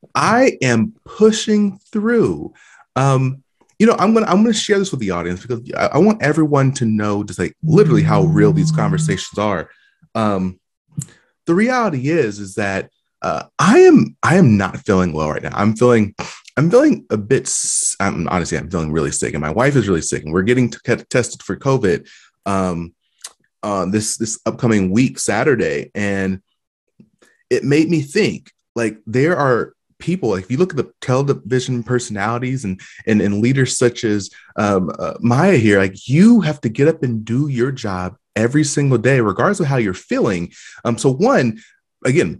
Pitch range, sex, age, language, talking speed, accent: 110-175 Hz, male, 30-49, English, 180 wpm, American